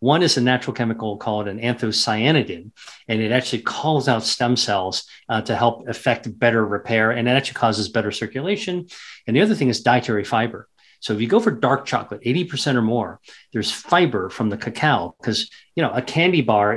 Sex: male